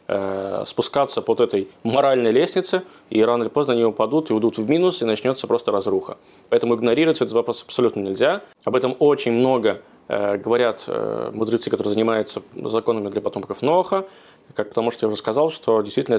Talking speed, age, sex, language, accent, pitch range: 165 wpm, 20-39, male, Russian, native, 115-145 Hz